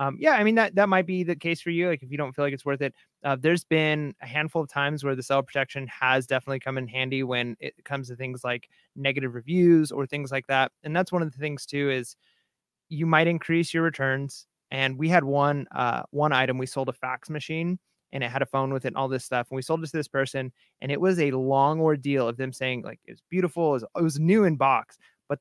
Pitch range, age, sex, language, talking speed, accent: 130-160 Hz, 30-49, male, English, 265 wpm, American